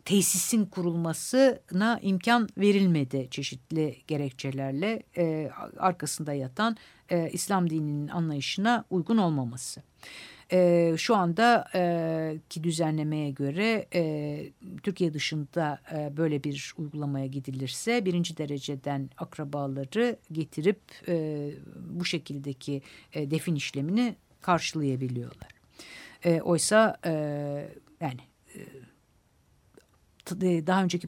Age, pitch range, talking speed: 60-79, 145-175 Hz, 95 wpm